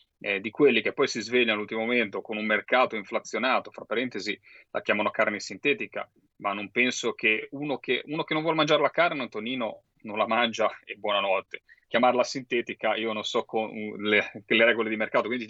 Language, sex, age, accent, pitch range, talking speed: Italian, male, 30-49, native, 105-130 Hz, 190 wpm